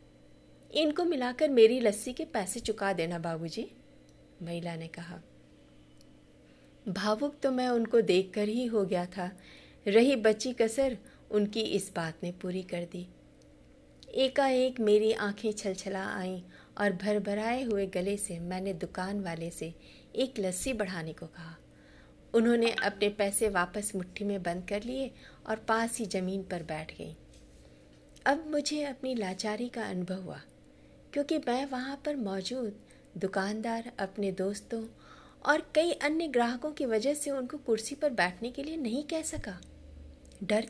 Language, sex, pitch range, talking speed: Hindi, female, 180-255 Hz, 145 wpm